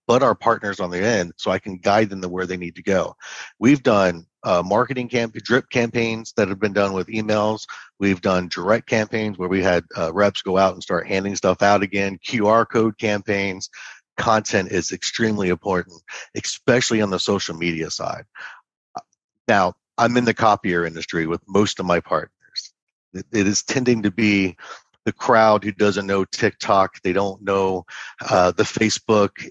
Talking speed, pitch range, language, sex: 180 wpm, 95-115 Hz, English, male